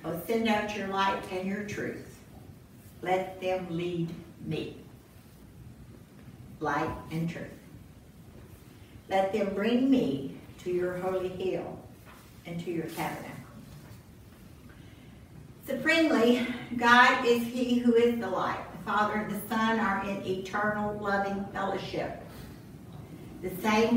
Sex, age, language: female, 60-79, English